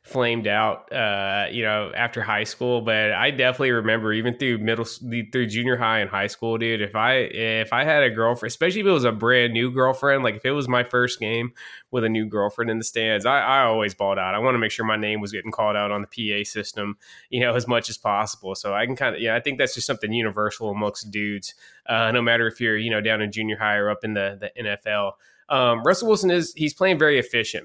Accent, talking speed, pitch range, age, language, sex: American, 250 wpm, 110-125 Hz, 20-39, English, male